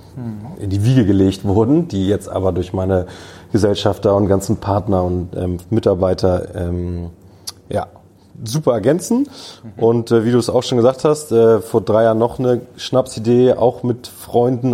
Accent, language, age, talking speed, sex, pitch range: German, German, 30-49, 165 wpm, male, 95-110 Hz